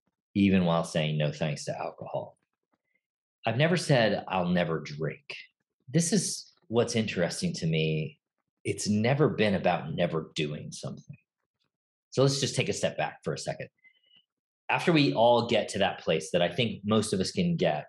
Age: 40-59